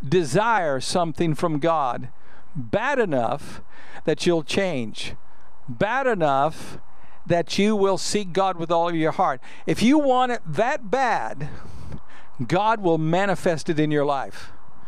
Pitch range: 155-195 Hz